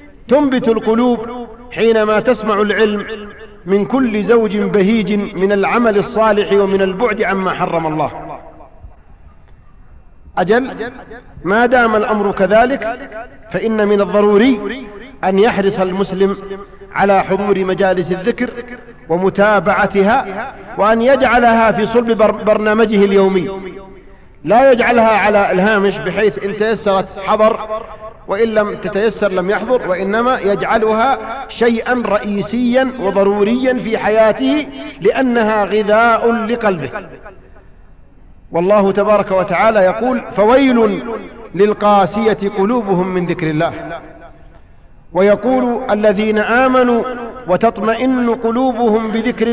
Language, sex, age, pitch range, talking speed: English, male, 40-59, 195-230 Hz, 95 wpm